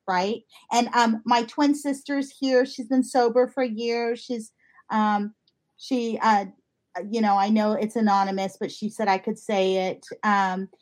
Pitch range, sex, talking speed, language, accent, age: 220-270 Hz, female, 165 wpm, English, American, 40-59